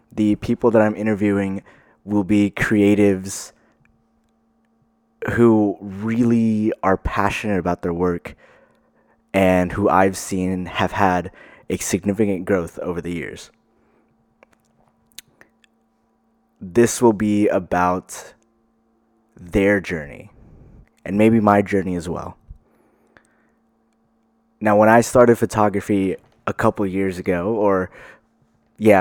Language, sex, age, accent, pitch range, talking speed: English, male, 20-39, American, 95-110 Hz, 105 wpm